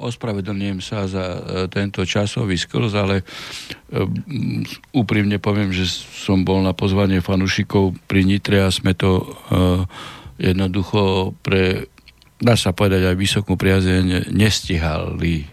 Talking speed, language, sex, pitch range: 110 wpm, Slovak, male, 90-110 Hz